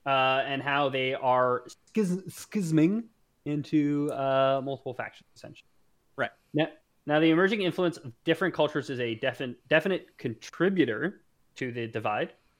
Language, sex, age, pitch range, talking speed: English, male, 20-39, 125-155 Hz, 135 wpm